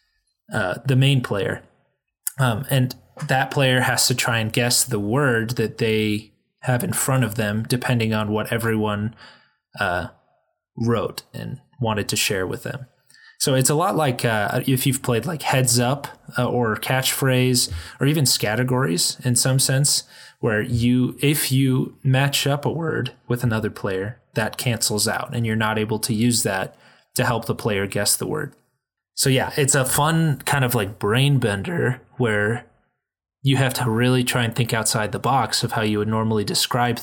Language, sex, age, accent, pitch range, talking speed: English, male, 20-39, American, 110-130 Hz, 180 wpm